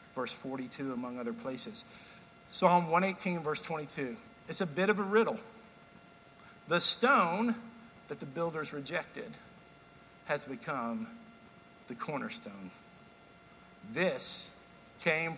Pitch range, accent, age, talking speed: 135-205 Hz, American, 50-69, 105 wpm